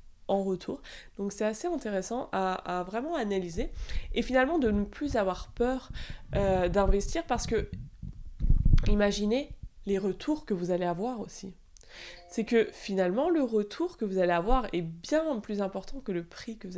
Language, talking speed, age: French, 165 wpm, 20-39